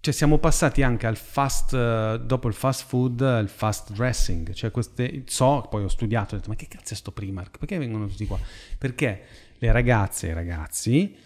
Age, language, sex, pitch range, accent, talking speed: 30-49, Italian, male, 105-130 Hz, native, 195 wpm